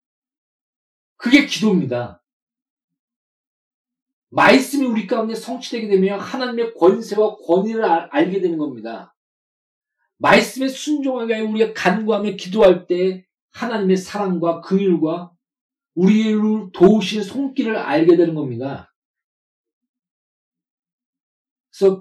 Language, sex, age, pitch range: Korean, male, 40-59, 150-250 Hz